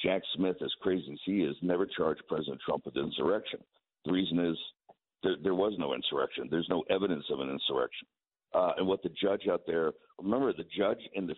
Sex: male